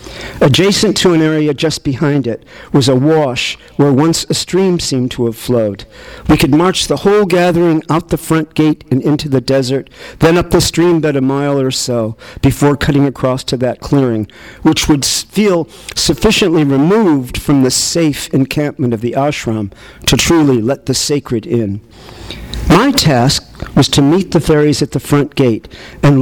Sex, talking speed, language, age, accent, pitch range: male, 175 wpm, English, 50-69, American, 120-160 Hz